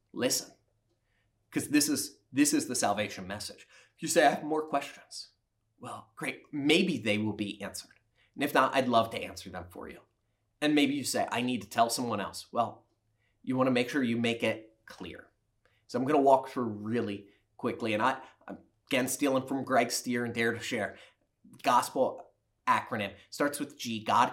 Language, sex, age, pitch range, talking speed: English, male, 30-49, 105-140 Hz, 190 wpm